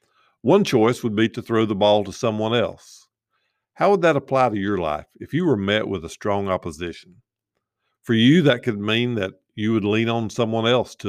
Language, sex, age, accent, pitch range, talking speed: English, male, 50-69, American, 100-130 Hz, 210 wpm